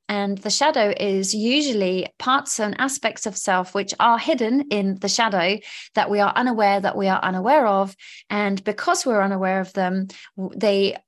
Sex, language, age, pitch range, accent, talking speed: female, English, 30-49, 195-240 Hz, British, 175 wpm